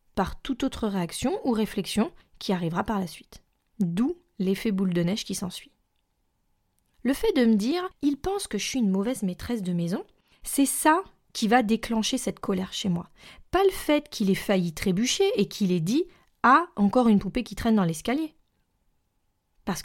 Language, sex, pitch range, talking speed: French, female, 195-270 Hz, 185 wpm